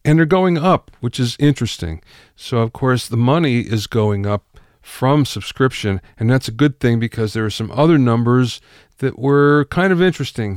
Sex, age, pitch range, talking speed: male, 50-69, 110-145 Hz, 185 wpm